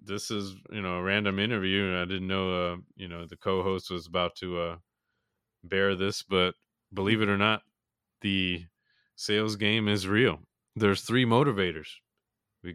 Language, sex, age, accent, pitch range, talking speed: English, male, 20-39, American, 85-100 Hz, 165 wpm